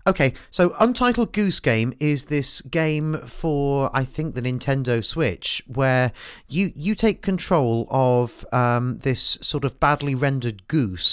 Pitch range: 115-150 Hz